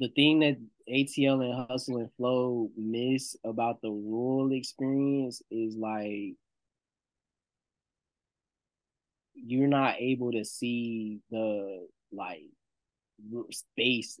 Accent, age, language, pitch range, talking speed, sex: American, 10-29, English, 110-125 Hz, 95 wpm, male